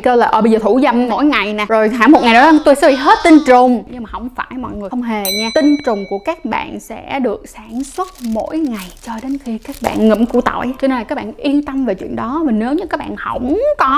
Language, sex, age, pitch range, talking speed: Vietnamese, female, 10-29, 220-290 Hz, 290 wpm